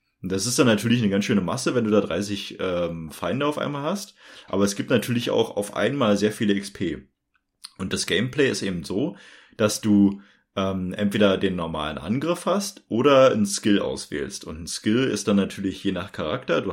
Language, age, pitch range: German, 30-49, 100-135 Hz